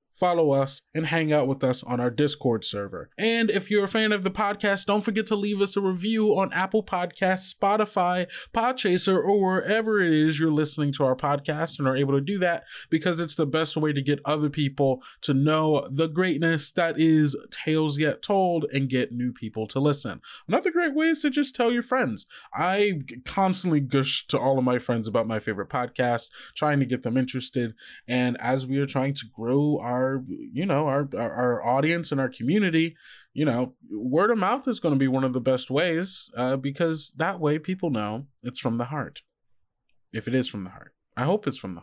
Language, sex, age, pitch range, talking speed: English, male, 20-39, 130-185 Hz, 210 wpm